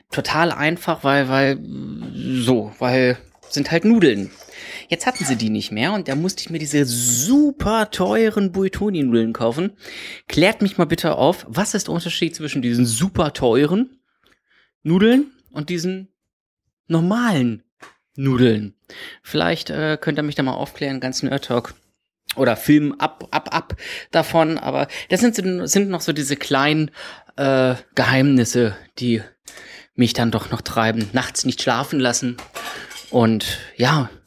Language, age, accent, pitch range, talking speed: German, 30-49, German, 120-170 Hz, 145 wpm